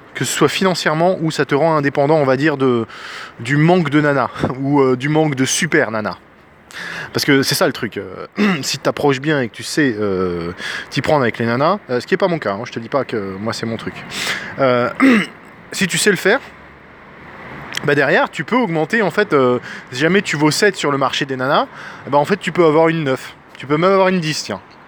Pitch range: 125-185 Hz